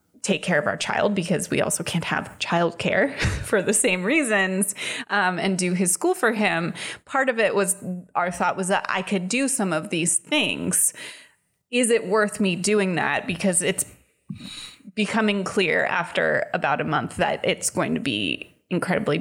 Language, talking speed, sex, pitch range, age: English, 180 wpm, female, 175-205 Hz, 20-39